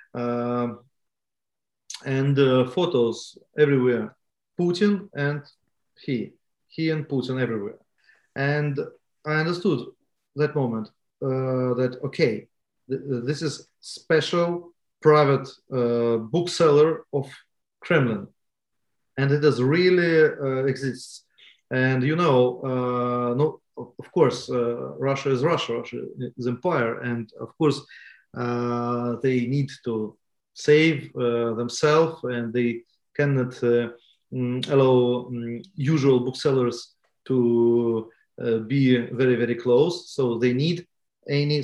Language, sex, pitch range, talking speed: English, male, 120-150 Hz, 110 wpm